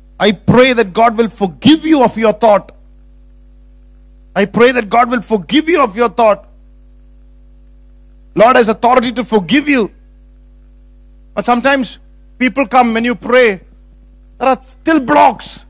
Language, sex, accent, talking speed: English, male, Indian, 140 wpm